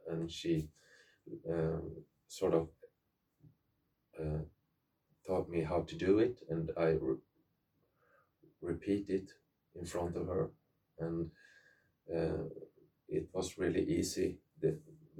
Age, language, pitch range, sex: 30-49, English, 80-85 Hz, male